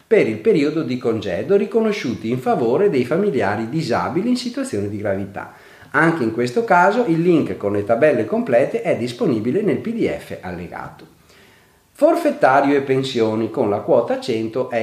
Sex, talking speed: male, 155 wpm